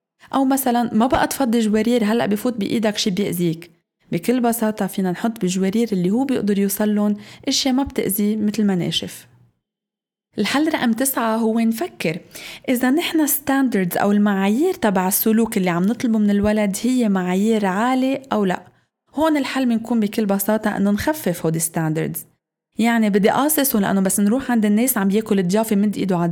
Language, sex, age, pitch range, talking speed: Arabic, female, 20-39, 185-235 Hz, 165 wpm